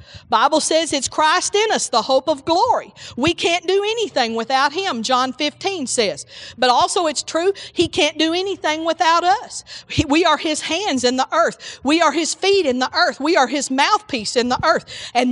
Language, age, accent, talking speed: English, 40-59, American, 200 wpm